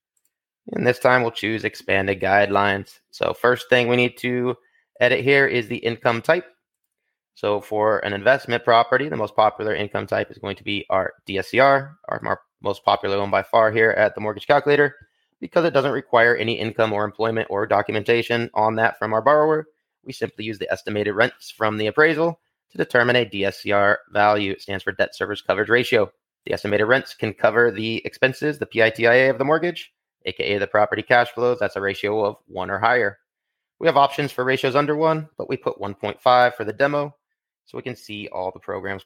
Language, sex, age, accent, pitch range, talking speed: English, male, 20-39, American, 105-140 Hz, 195 wpm